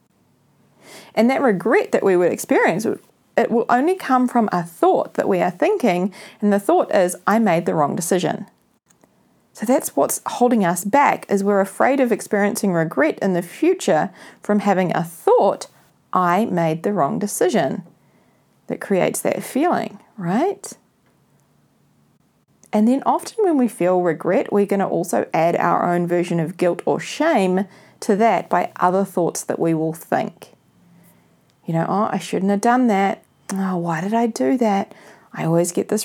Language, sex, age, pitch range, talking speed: English, female, 40-59, 175-230 Hz, 170 wpm